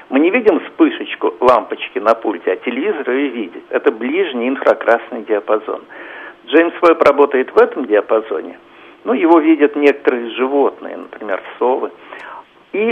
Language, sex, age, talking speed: Russian, male, 50-69, 135 wpm